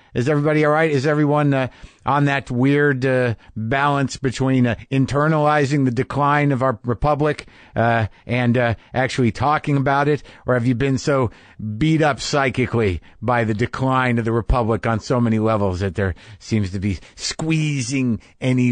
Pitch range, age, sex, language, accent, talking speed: 115-145 Hz, 50-69, male, English, American, 165 wpm